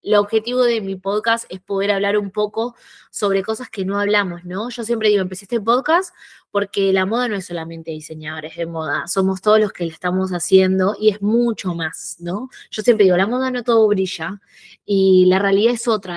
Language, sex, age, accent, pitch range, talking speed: Spanish, female, 20-39, Argentinian, 190-235 Hz, 210 wpm